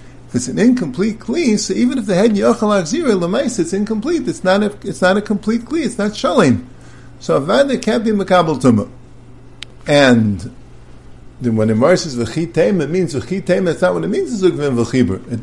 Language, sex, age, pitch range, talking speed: English, male, 50-69, 125-205 Hz, 170 wpm